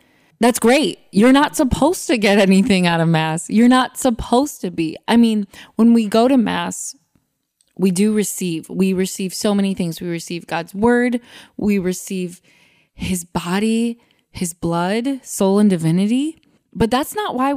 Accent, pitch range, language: American, 175-230 Hz, English